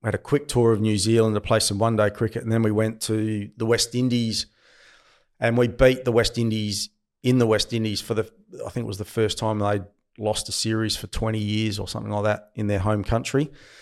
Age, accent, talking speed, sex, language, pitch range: 30-49, Australian, 245 wpm, male, English, 105-120 Hz